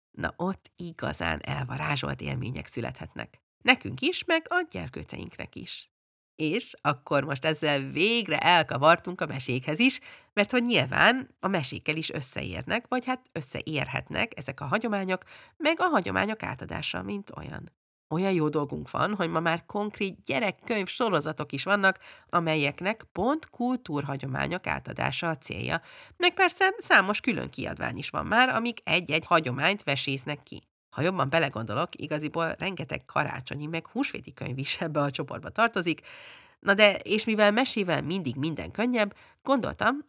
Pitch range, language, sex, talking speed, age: 145-220 Hz, Hungarian, female, 140 wpm, 30-49